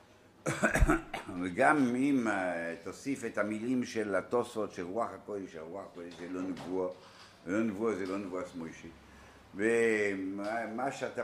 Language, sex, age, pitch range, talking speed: Hebrew, male, 60-79, 85-130 Hz, 115 wpm